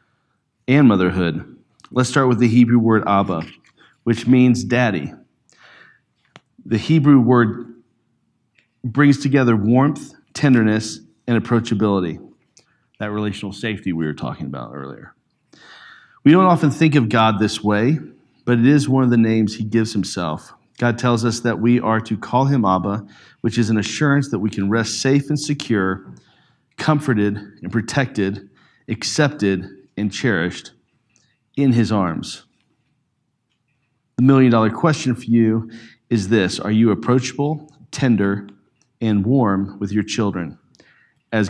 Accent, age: American, 40-59